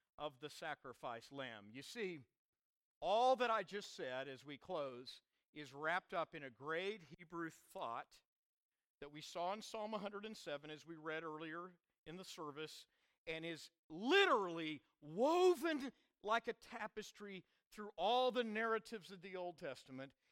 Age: 50-69